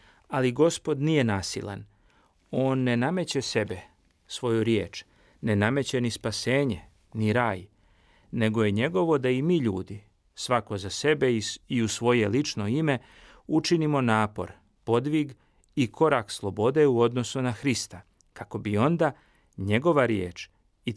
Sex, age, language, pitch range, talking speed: male, 40-59, Croatian, 105-135 Hz, 135 wpm